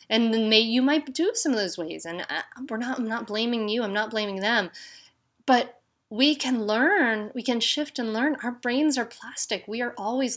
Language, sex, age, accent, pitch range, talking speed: English, female, 30-49, American, 205-265 Hz, 215 wpm